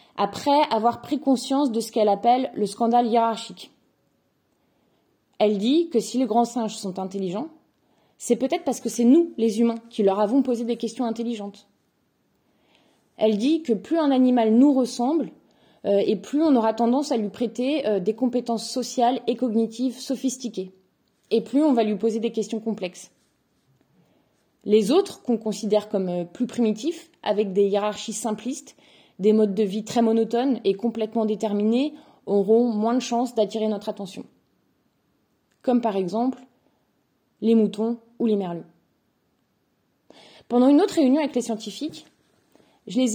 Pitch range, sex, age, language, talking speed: 215-255 Hz, female, 20-39, French, 155 wpm